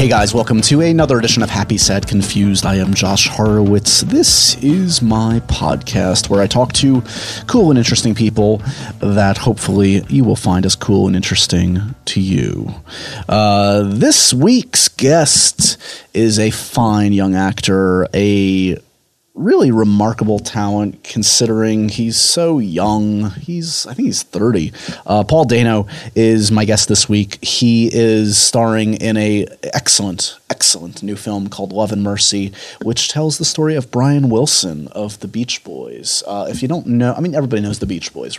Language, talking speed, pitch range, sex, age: English, 160 wpm, 100-120 Hz, male, 30-49